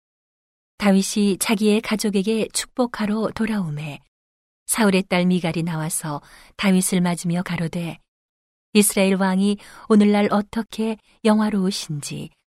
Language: Korean